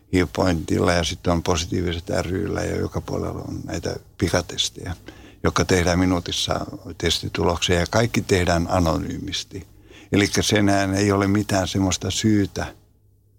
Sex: male